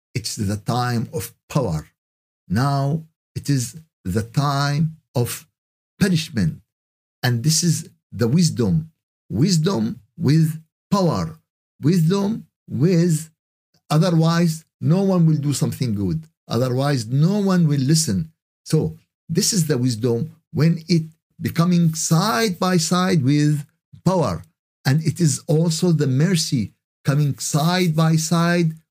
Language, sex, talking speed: Arabic, male, 120 wpm